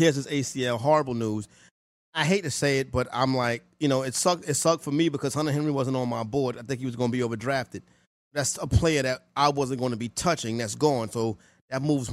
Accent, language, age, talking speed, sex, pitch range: American, English, 30-49, 245 wpm, male, 120-145 Hz